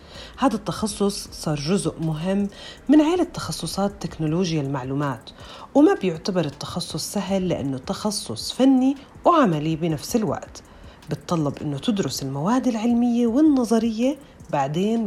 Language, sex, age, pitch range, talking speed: Arabic, female, 40-59, 150-225 Hz, 110 wpm